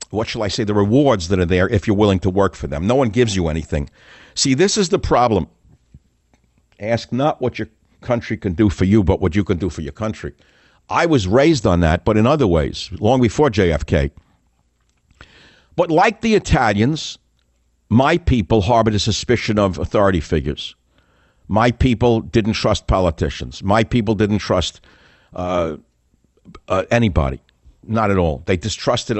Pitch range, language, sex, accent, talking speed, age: 85-120 Hz, English, male, American, 175 wpm, 60-79